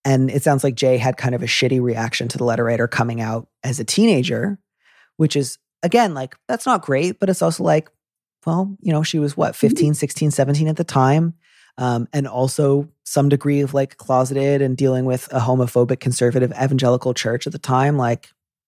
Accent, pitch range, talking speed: American, 120-145 Hz, 200 wpm